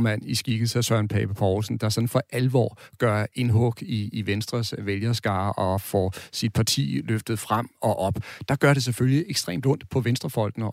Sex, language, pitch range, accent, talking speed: male, Danish, 105-125 Hz, native, 185 wpm